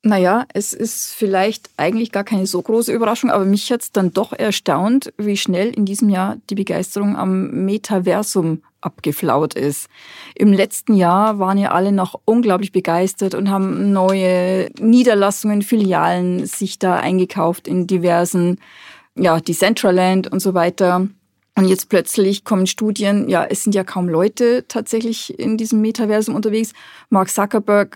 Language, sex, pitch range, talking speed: German, female, 190-220 Hz, 150 wpm